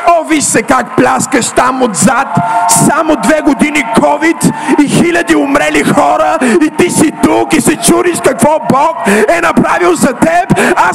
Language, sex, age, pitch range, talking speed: Bulgarian, male, 50-69, 260-355 Hz, 155 wpm